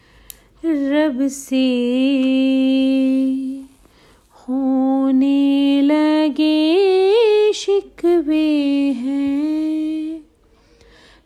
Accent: native